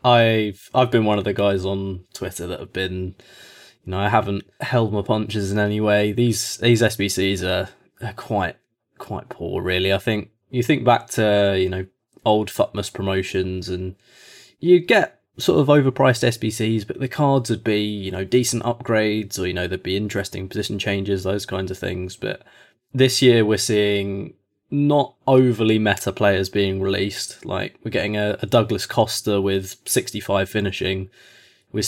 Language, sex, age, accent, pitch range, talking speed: English, male, 20-39, British, 100-120 Hz, 175 wpm